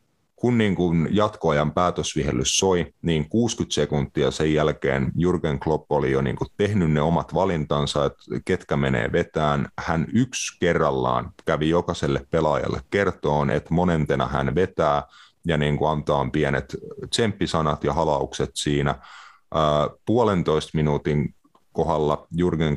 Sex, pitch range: male, 75-85 Hz